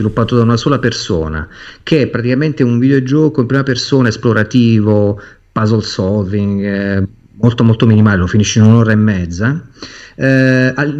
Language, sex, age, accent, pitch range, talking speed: Italian, male, 40-59, native, 110-145 Hz, 145 wpm